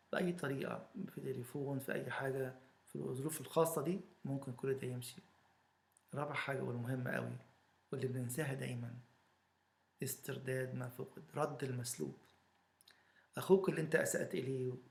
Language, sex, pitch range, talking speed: English, male, 125-140 Hz, 130 wpm